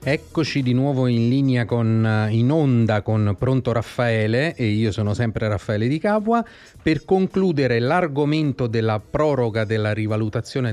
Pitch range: 110-145 Hz